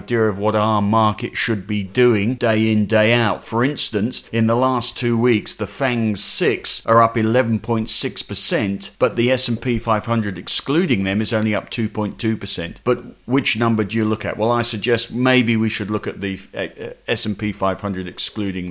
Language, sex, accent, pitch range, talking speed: English, male, British, 105-120 Hz, 175 wpm